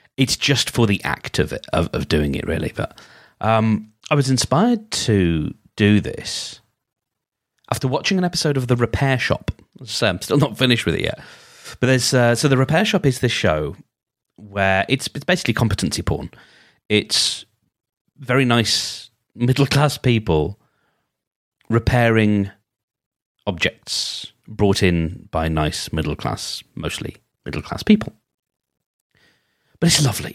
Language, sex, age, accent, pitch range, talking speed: English, male, 30-49, British, 100-135 Hz, 145 wpm